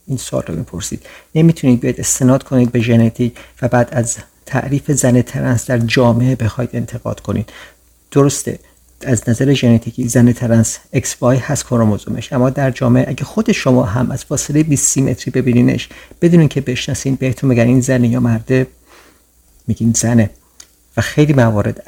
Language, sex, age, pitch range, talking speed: Persian, male, 50-69, 115-140 Hz, 150 wpm